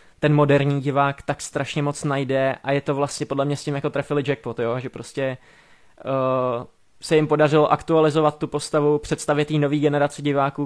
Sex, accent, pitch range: male, native, 135-150 Hz